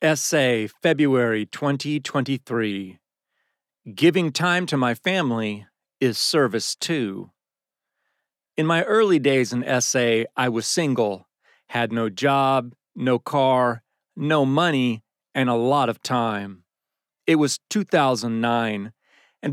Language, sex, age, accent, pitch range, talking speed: English, male, 40-59, American, 120-150 Hz, 110 wpm